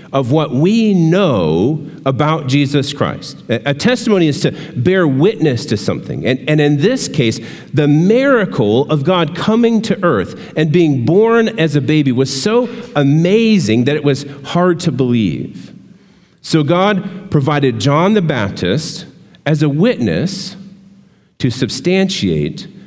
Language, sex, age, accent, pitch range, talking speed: English, male, 40-59, American, 135-190 Hz, 140 wpm